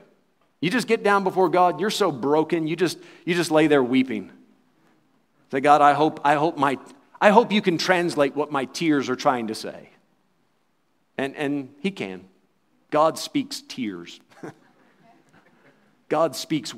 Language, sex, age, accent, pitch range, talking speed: English, male, 40-59, American, 125-155 Hz, 155 wpm